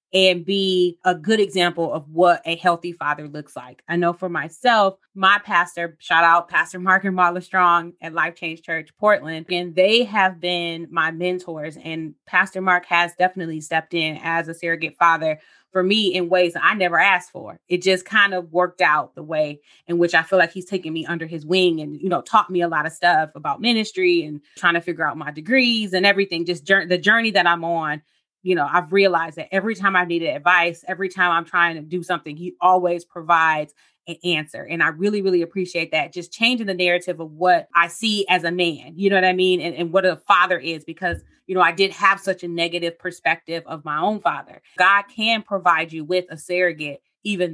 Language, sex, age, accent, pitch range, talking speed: English, female, 20-39, American, 165-185 Hz, 220 wpm